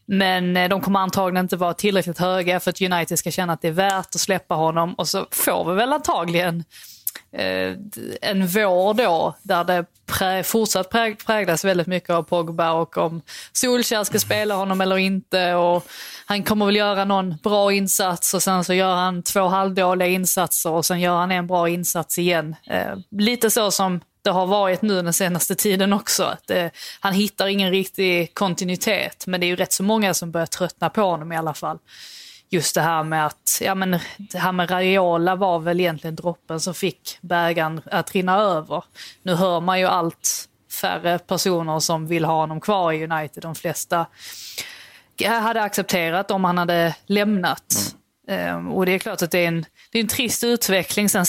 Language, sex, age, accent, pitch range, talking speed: Swedish, female, 20-39, native, 170-195 Hz, 185 wpm